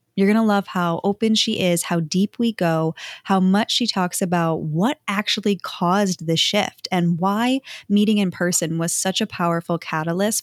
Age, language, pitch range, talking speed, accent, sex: 10-29, English, 170-215 Hz, 185 wpm, American, female